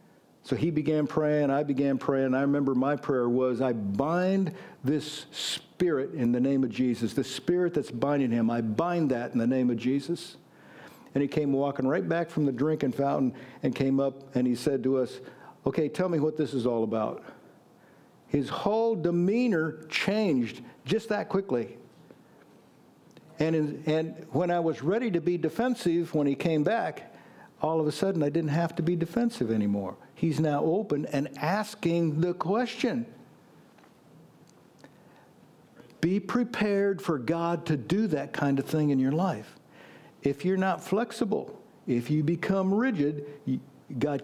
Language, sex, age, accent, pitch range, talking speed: English, male, 50-69, American, 130-170 Hz, 165 wpm